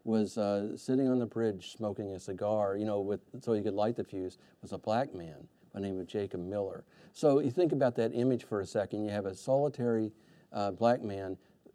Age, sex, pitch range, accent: 50-69, male, 100-120 Hz, American